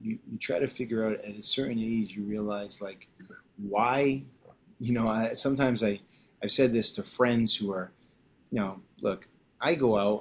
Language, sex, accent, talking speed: English, male, American, 180 wpm